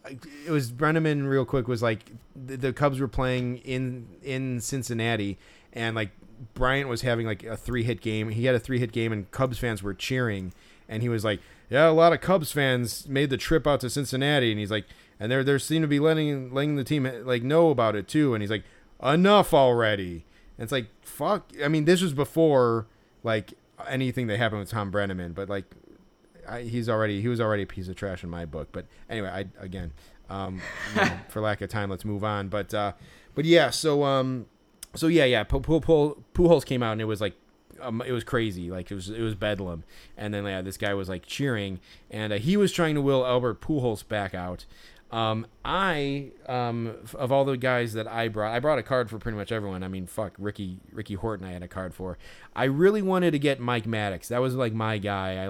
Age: 30-49